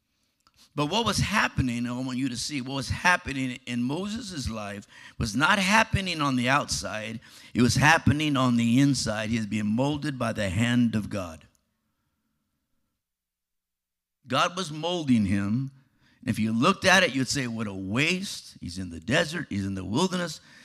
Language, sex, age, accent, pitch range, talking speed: English, male, 50-69, American, 105-155 Hz, 170 wpm